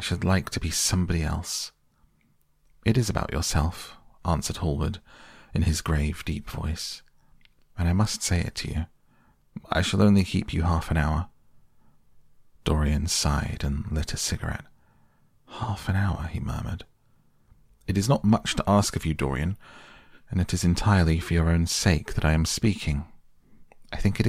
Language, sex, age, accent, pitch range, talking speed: English, male, 40-59, British, 75-95 Hz, 170 wpm